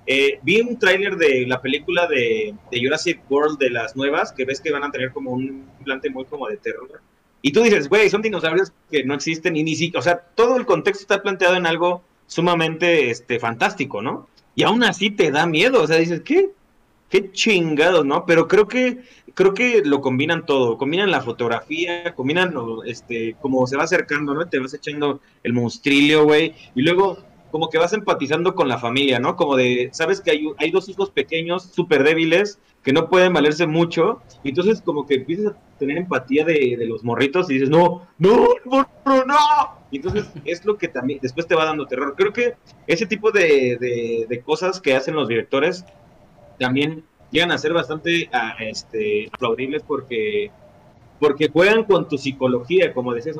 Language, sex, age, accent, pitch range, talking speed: Spanish, male, 30-49, Mexican, 140-195 Hz, 195 wpm